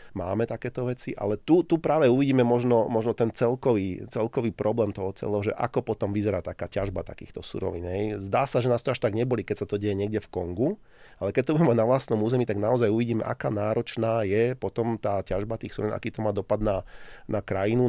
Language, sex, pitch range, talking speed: Slovak, male, 100-120 Hz, 215 wpm